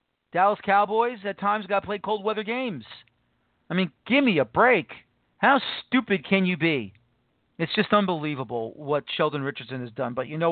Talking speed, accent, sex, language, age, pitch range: 175 wpm, American, male, English, 40-59, 150-205 Hz